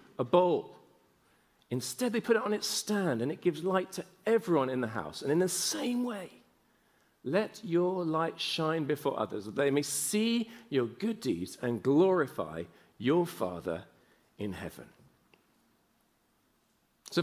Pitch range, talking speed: 130-185 Hz, 150 wpm